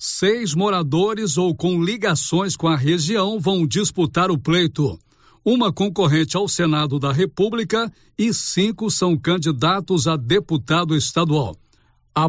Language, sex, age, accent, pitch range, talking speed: Portuguese, male, 60-79, Brazilian, 160-195 Hz, 125 wpm